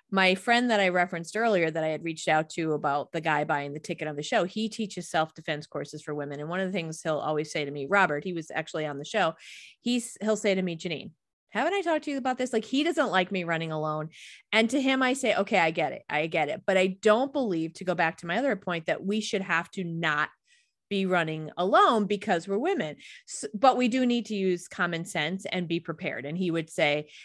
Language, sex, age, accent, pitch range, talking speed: English, female, 30-49, American, 160-200 Hz, 250 wpm